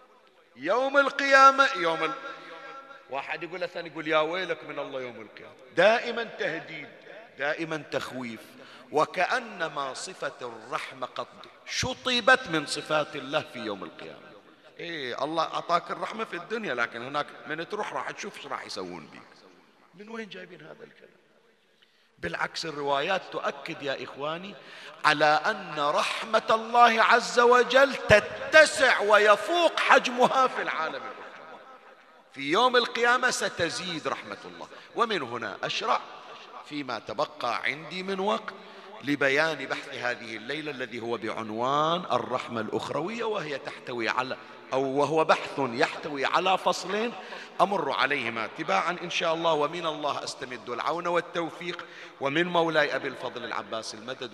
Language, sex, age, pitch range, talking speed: Arabic, male, 50-69, 140-220 Hz, 125 wpm